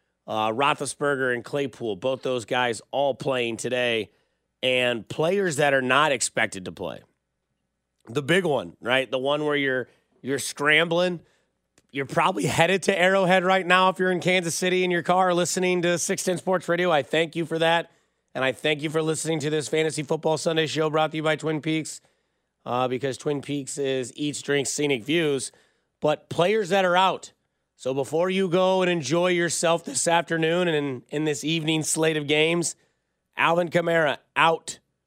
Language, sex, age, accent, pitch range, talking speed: English, male, 30-49, American, 130-165 Hz, 180 wpm